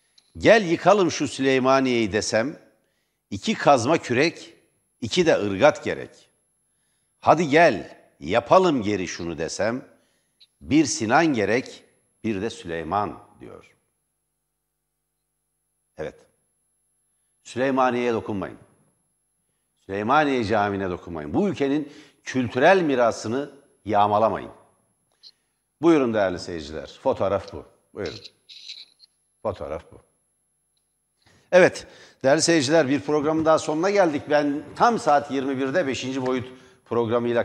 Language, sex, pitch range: Turkish, male, 100-135 Hz